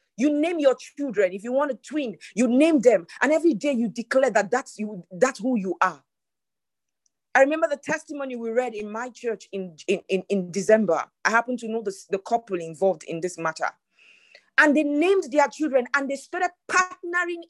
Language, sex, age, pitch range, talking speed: English, female, 40-59, 190-285 Hz, 195 wpm